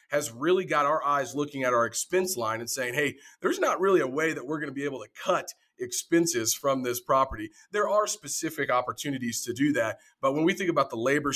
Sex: male